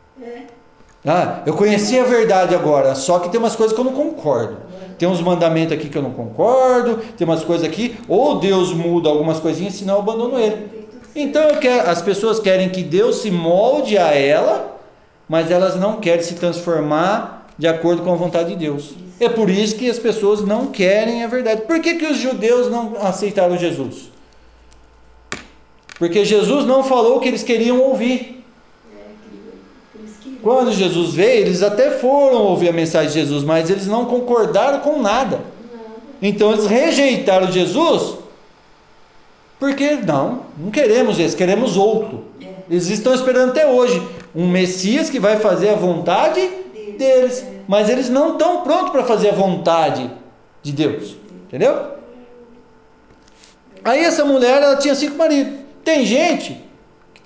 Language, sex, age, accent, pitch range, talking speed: Portuguese, male, 40-59, Brazilian, 180-255 Hz, 160 wpm